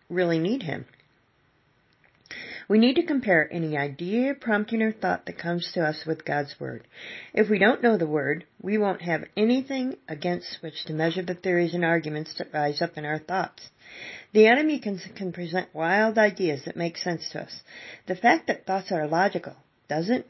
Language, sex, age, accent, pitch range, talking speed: English, female, 40-59, American, 160-220 Hz, 185 wpm